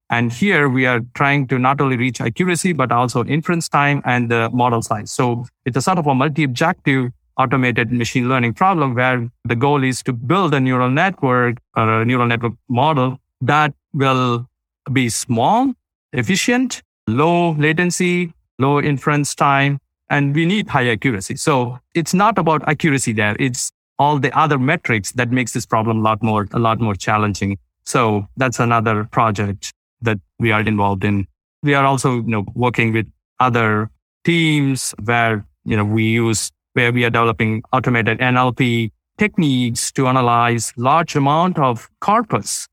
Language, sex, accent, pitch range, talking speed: English, male, Indian, 115-140 Hz, 165 wpm